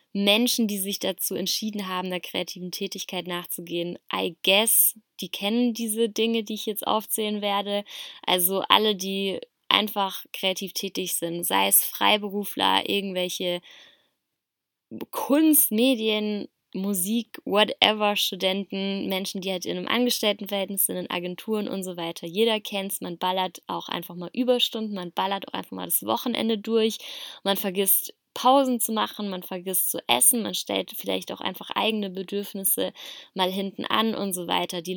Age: 20-39